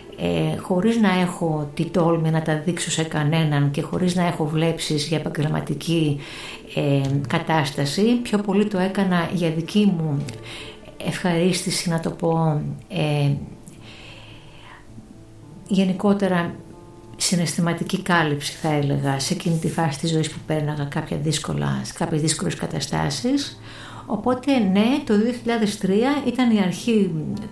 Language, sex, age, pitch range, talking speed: Greek, female, 60-79, 155-195 Hz, 115 wpm